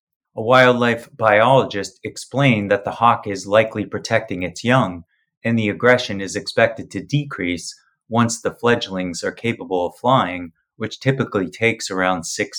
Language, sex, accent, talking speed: English, male, American, 150 wpm